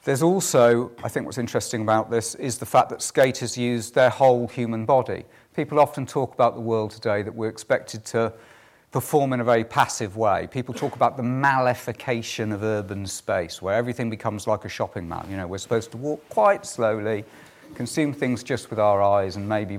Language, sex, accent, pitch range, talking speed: English, male, British, 100-125 Hz, 195 wpm